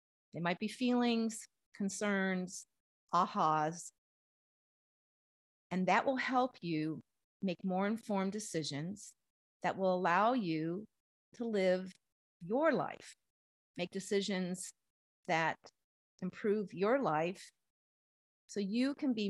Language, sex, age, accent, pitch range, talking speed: English, female, 50-69, American, 175-240 Hz, 105 wpm